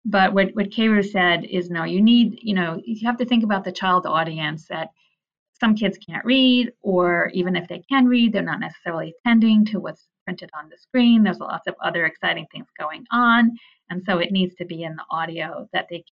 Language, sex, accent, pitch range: English, female, American, 170-215 Hz